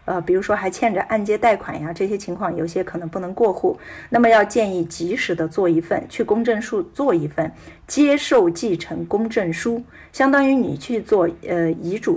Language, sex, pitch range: Chinese, female, 170-230 Hz